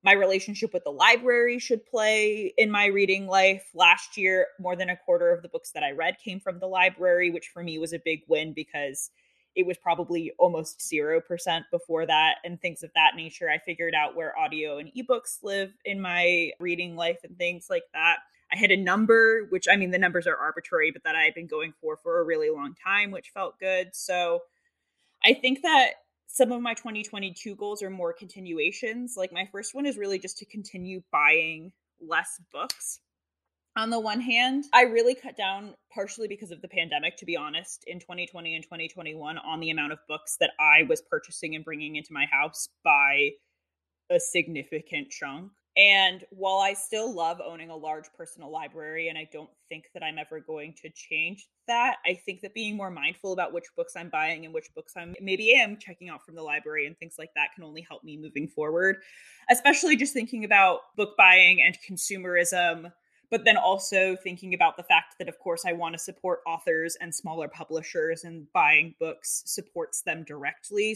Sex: female